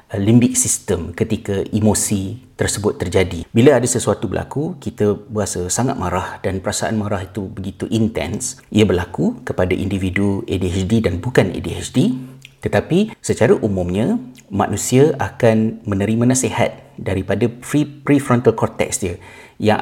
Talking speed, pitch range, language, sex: 125 wpm, 100-115 Hz, Malay, male